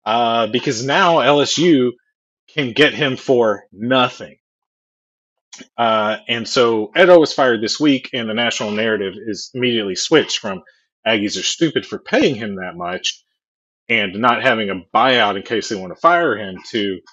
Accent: American